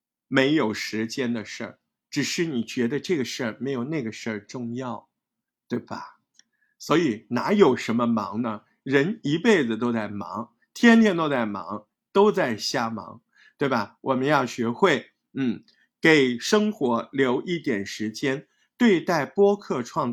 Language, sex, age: Chinese, male, 50-69